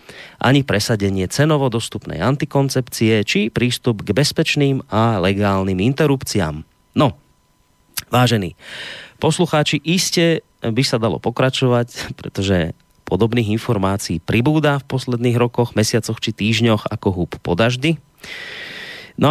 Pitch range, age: 95-130 Hz, 30-49